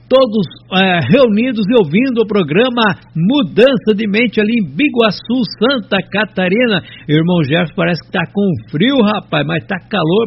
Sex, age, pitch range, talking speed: male, 60-79, 180-230 Hz, 150 wpm